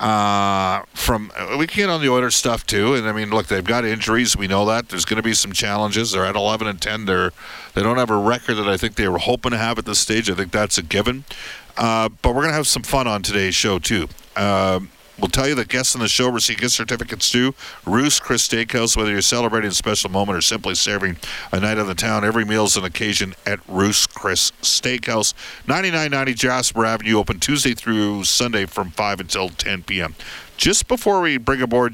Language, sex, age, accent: English, male, 50-69, American